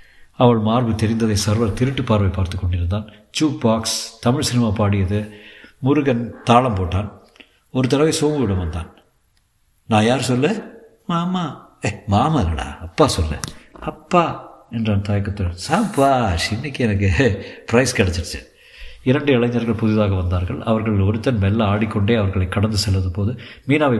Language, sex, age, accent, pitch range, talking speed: Tamil, male, 50-69, native, 100-125 Hz, 120 wpm